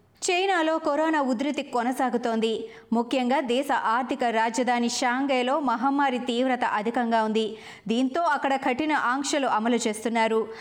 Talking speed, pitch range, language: 105 wpm, 225-285 Hz, Telugu